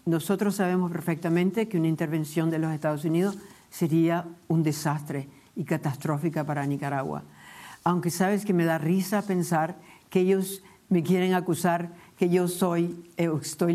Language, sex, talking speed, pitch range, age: Spanish, female, 145 wpm, 155-195 Hz, 60-79